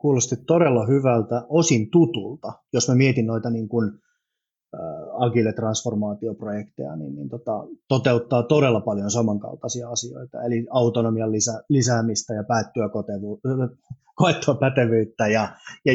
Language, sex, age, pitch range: Finnish, male, 30-49, 110-130 Hz